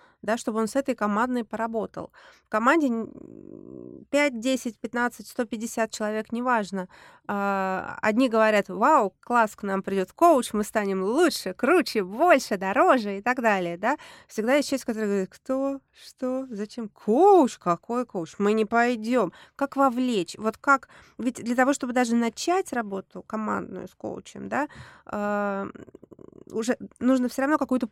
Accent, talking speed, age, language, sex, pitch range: native, 145 wpm, 20-39, Russian, female, 205-255 Hz